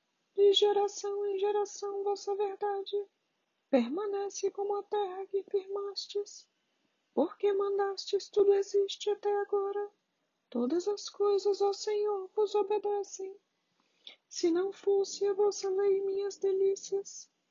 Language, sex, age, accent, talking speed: Portuguese, female, 40-59, Brazilian, 115 wpm